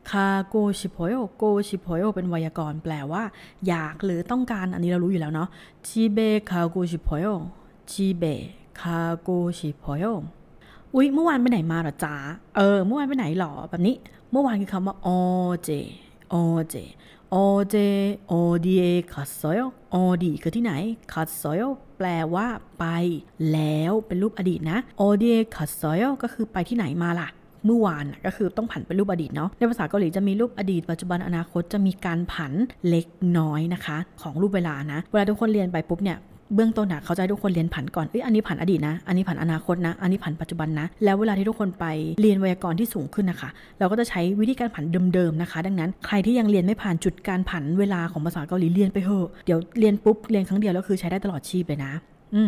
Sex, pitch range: female, 170-205 Hz